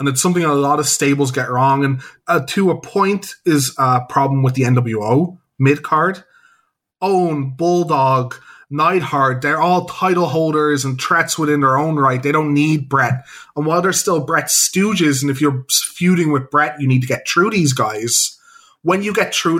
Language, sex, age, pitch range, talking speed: English, male, 20-39, 135-170 Hz, 195 wpm